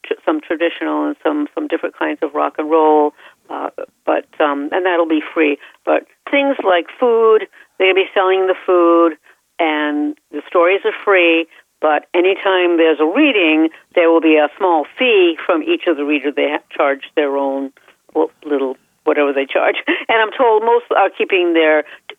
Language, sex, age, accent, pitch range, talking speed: English, female, 60-79, American, 150-215 Hz, 180 wpm